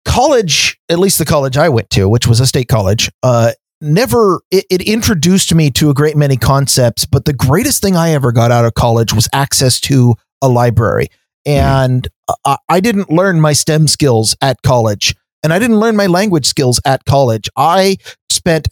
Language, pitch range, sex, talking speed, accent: English, 125-160 Hz, male, 190 wpm, American